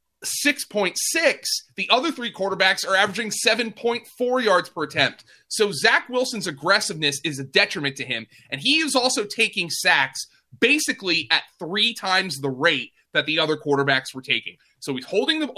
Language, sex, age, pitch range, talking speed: English, male, 30-49, 140-195 Hz, 160 wpm